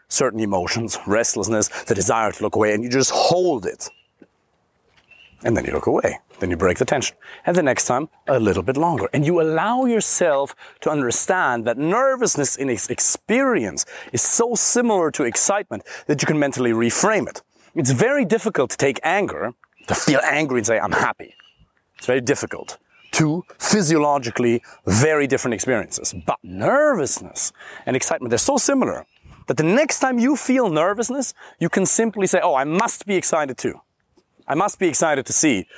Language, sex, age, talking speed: English, male, 30-49, 175 wpm